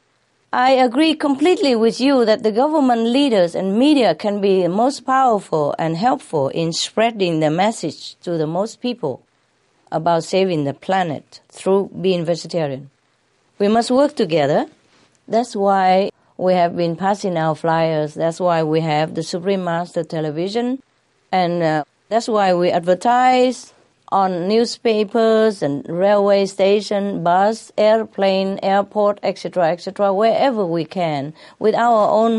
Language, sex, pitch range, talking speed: English, female, 165-225 Hz, 140 wpm